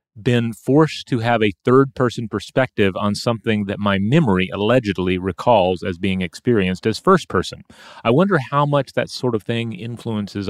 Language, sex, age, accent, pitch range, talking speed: English, male, 30-49, American, 85-110 Hz, 160 wpm